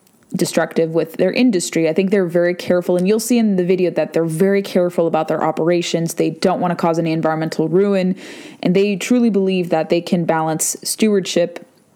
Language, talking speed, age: English, 195 wpm, 20-39